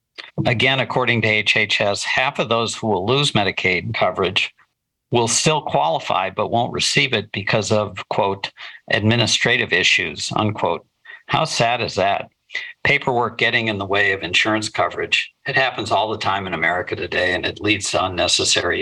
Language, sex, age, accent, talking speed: English, male, 50-69, American, 160 wpm